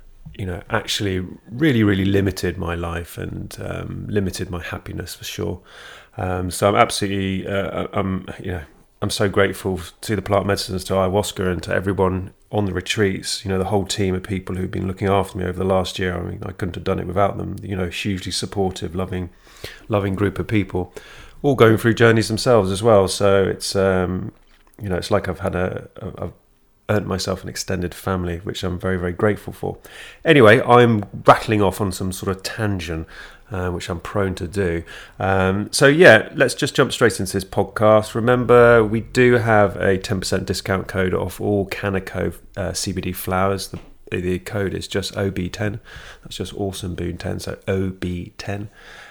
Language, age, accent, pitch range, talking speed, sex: English, 30-49, British, 90-105 Hz, 190 wpm, male